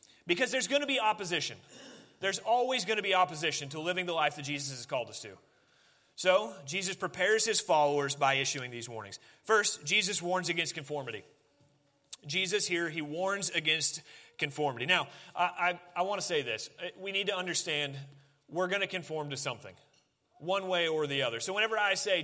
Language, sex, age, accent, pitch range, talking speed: English, male, 30-49, American, 155-205 Hz, 185 wpm